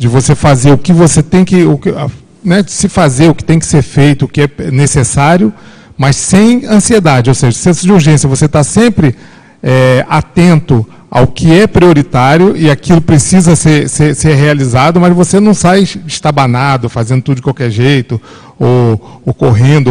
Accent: Brazilian